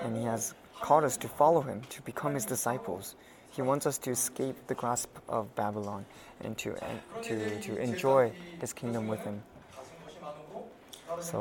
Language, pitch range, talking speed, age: English, 115-140 Hz, 165 wpm, 20-39